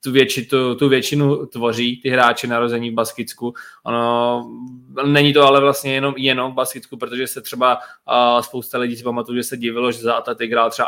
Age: 20-39